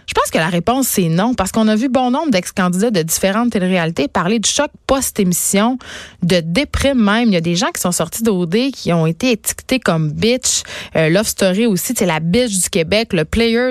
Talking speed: 245 wpm